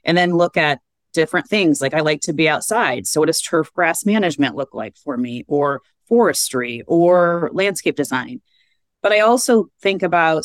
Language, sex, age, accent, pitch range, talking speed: English, female, 30-49, American, 145-175 Hz, 185 wpm